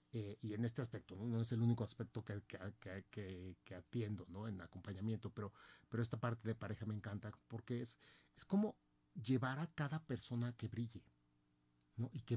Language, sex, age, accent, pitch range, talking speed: Spanish, male, 40-59, Mexican, 95-125 Hz, 170 wpm